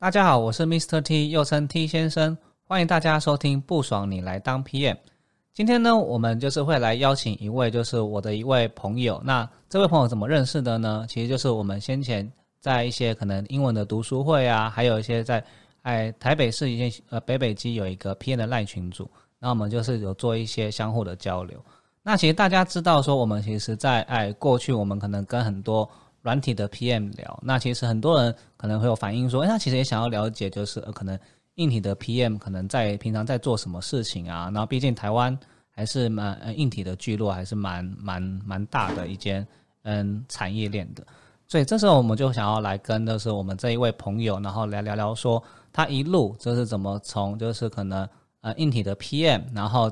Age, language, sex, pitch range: 20-39, Chinese, male, 105-130 Hz